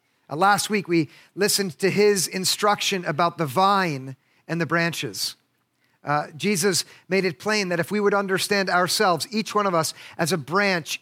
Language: English